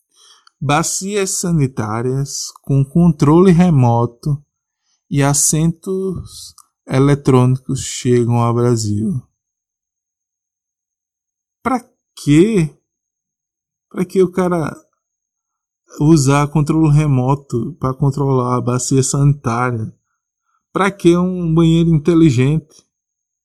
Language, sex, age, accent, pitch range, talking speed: Portuguese, male, 20-39, Brazilian, 125-175 Hz, 80 wpm